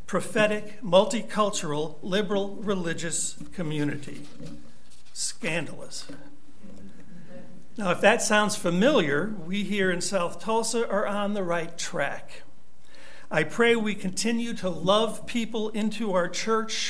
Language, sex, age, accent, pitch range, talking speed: English, male, 60-79, American, 175-210 Hz, 110 wpm